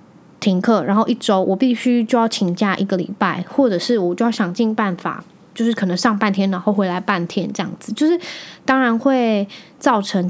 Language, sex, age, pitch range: Chinese, female, 10-29, 195-255 Hz